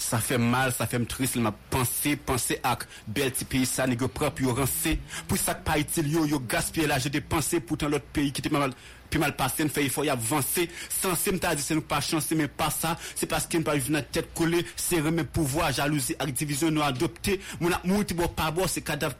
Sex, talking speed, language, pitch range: male, 230 wpm, English, 135-165 Hz